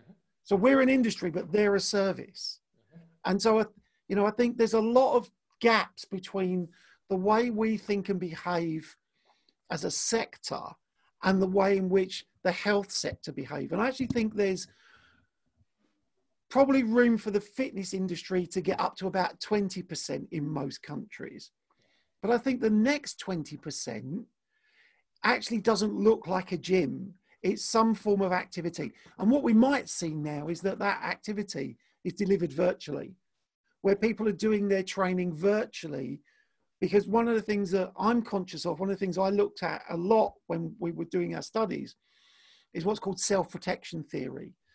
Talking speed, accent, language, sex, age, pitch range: 165 wpm, British, German, male, 50-69, 180-225 Hz